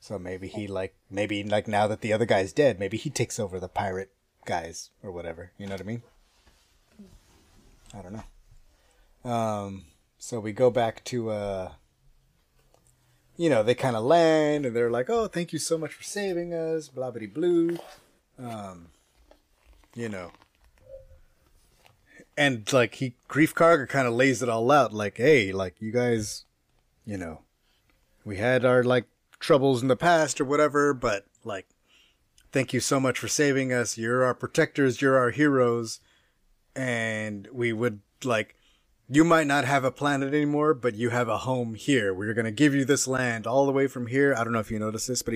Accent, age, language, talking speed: American, 30-49, English, 185 wpm